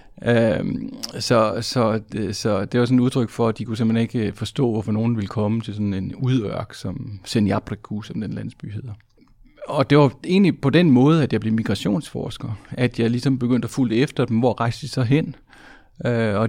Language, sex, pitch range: Danish, male, 110-130 Hz